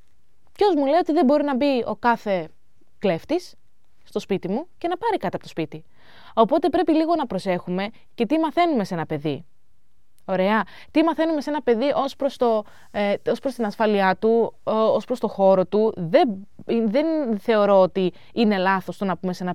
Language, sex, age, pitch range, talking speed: Greek, female, 20-39, 180-275 Hz, 195 wpm